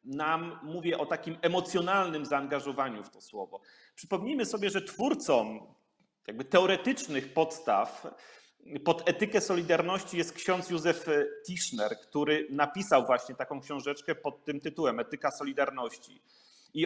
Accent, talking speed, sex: native, 120 wpm, male